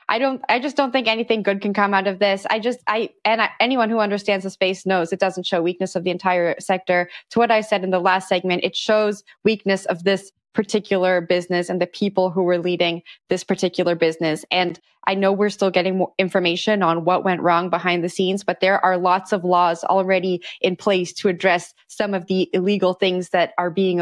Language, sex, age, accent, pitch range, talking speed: English, female, 20-39, American, 180-220 Hz, 220 wpm